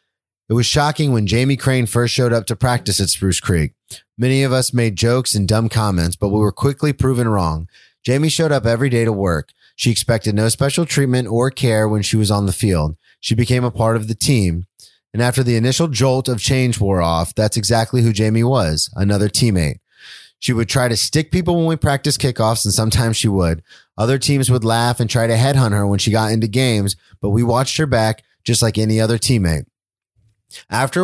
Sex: male